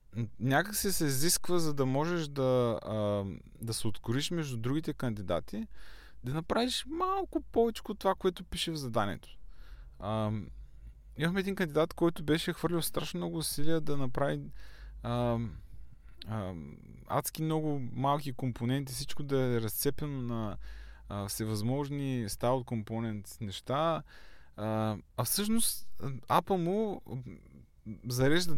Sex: male